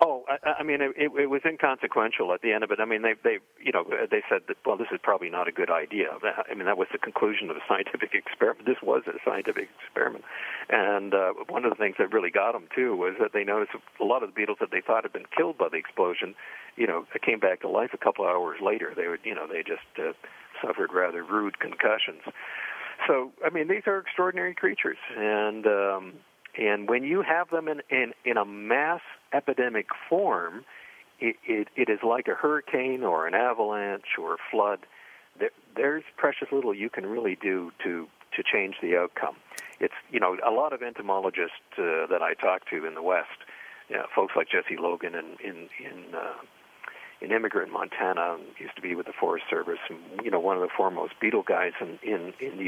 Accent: American